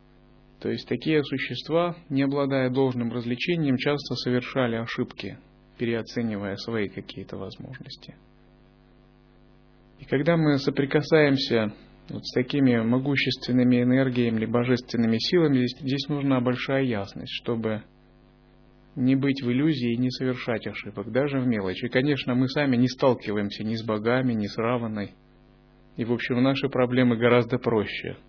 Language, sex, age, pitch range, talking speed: Russian, male, 30-49, 115-135 Hz, 130 wpm